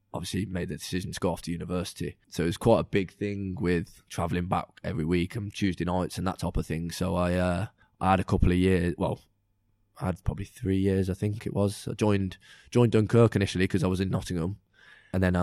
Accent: British